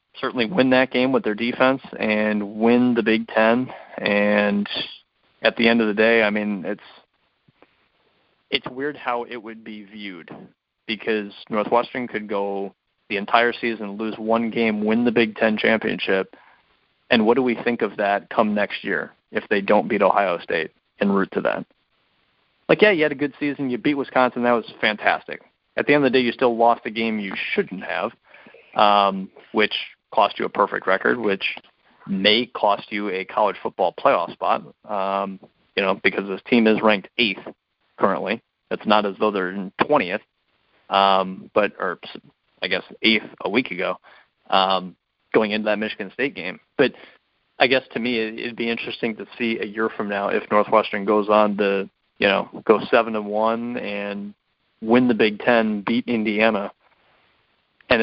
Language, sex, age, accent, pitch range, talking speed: English, male, 30-49, American, 105-120 Hz, 180 wpm